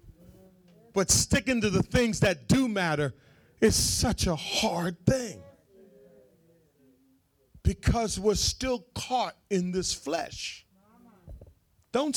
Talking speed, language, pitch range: 105 wpm, English, 115-185 Hz